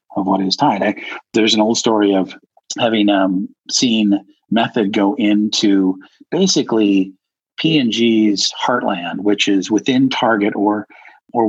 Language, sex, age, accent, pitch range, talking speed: English, male, 50-69, American, 100-110 Hz, 125 wpm